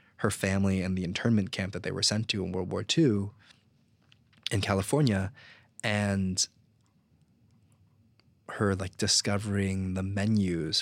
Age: 20-39